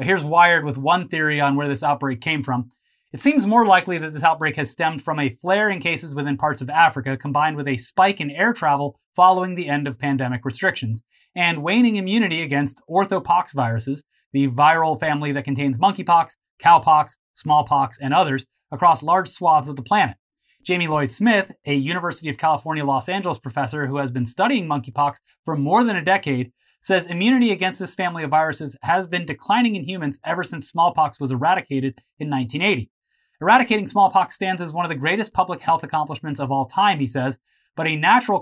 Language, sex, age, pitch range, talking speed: English, male, 30-49, 140-185 Hz, 190 wpm